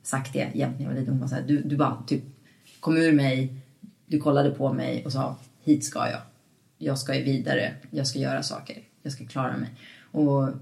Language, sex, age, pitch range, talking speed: English, female, 30-49, 135-165 Hz, 210 wpm